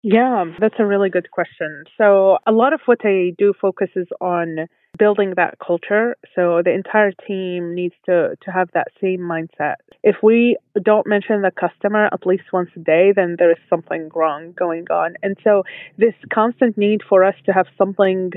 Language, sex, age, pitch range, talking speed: English, female, 20-39, 180-215 Hz, 185 wpm